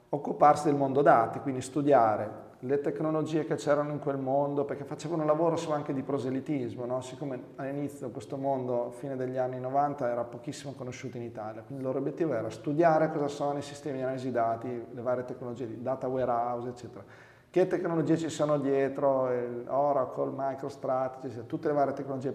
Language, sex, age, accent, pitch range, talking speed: Italian, male, 30-49, native, 120-145 Hz, 180 wpm